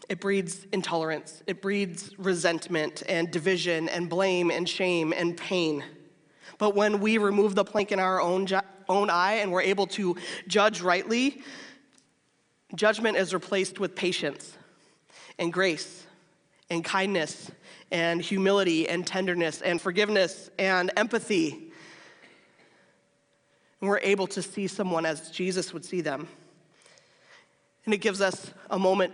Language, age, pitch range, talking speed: English, 20-39, 165-195 Hz, 135 wpm